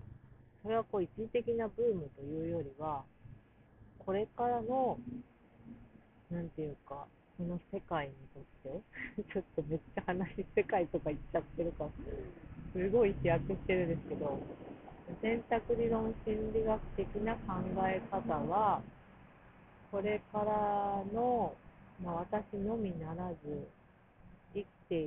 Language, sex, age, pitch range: Japanese, female, 40-59, 150-205 Hz